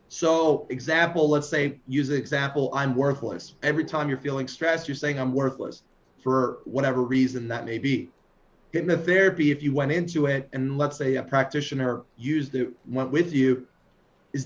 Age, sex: 30-49, male